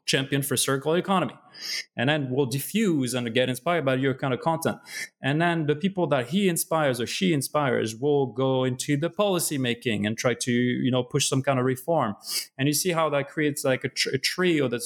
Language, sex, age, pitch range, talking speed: English, male, 30-49, 120-155 Hz, 220 wpm